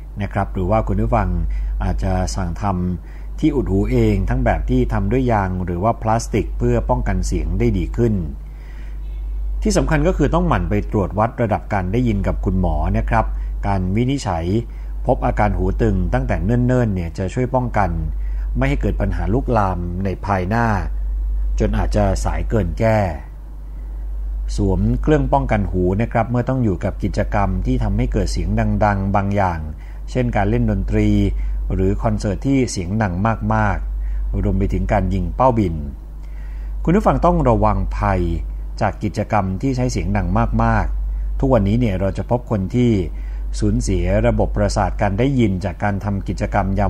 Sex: male